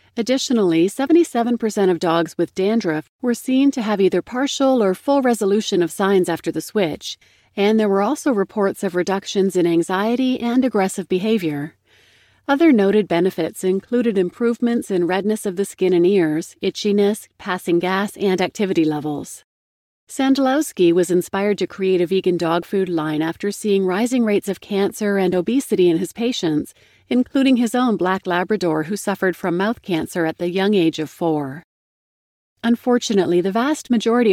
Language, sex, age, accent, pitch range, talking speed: English, female, 40-59, American, 175-225 Hz, 160 wpm